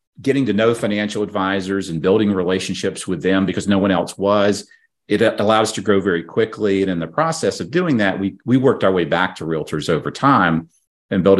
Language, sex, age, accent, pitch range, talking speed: English, male, 40-59, American, 80-100 Hz, 215 wpm